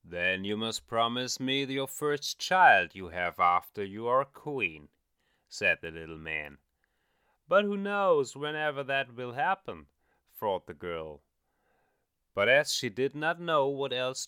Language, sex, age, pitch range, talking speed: English, male, 30-49, 95-140 Hz, 155 wpm